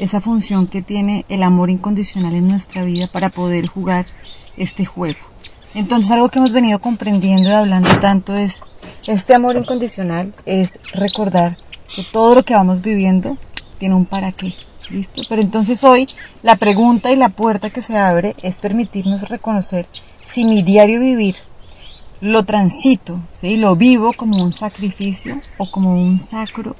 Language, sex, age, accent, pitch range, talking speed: Spanish, female, 30-49, Colombian, 185-225 Hz, 160 wpm